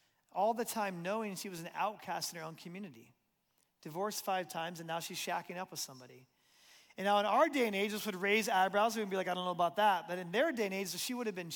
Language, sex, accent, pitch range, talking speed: English, male, American, 185-230 Hz, 265 wpm